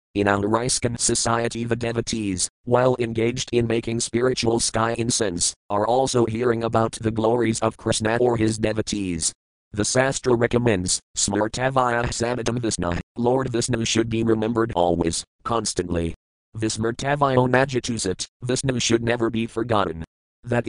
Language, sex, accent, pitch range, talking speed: English, male, American, 105-125 Hz, 125 wpm